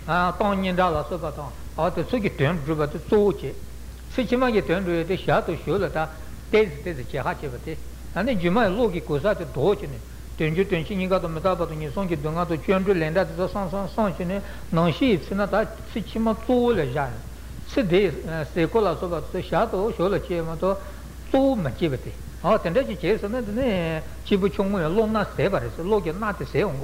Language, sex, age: Italian, male, 60-79